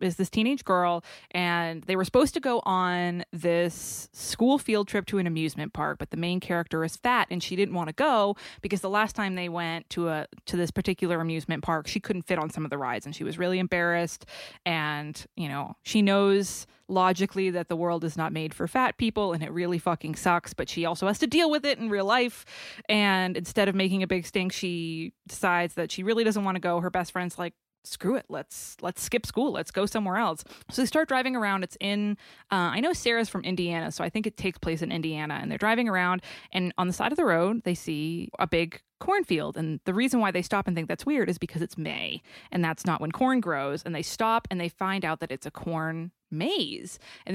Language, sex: English, female